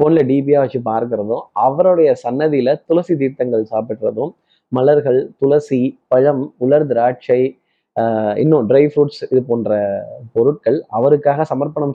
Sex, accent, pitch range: male, native, 130-170 Hz